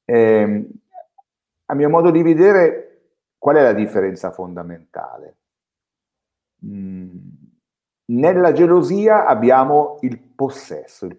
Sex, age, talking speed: male, 50-69, 95 wpm